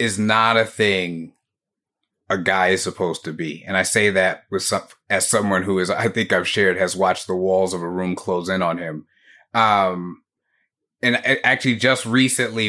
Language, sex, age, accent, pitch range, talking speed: English, male, 30-49, American, 95-120 Hz, 195 wpm